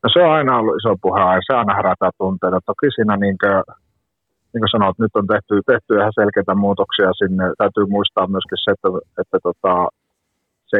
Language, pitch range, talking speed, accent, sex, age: Finnish, 95-110 Hz, 180 wpm, native, male, 30-49